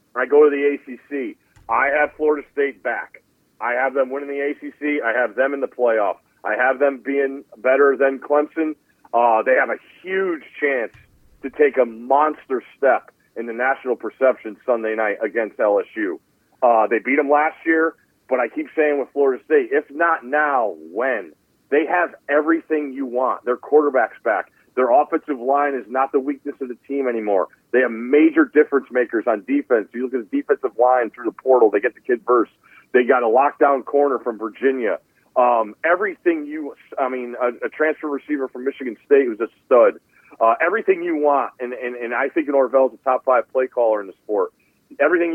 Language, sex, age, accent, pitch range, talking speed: English, male, 40-59, American, 130-160 Hz, 195 wpm